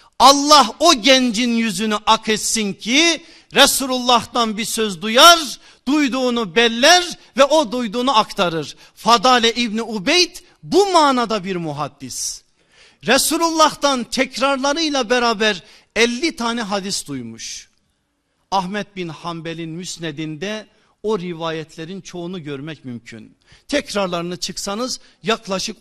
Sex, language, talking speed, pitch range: male, Turkish, 100 wpm, 195-250 Hz